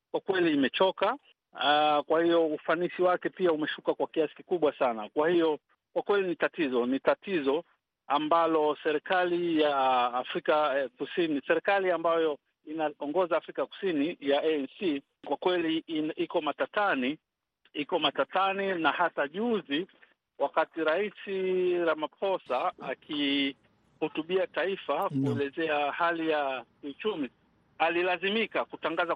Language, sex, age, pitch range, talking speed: Swahili, male, 50-69, 150-185 Hz, 105 wpm